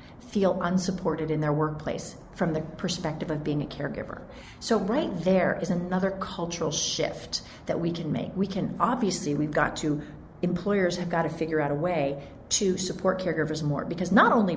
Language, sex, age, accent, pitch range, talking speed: English, female, 40-59, American, 165-215 Hz, 180 wpm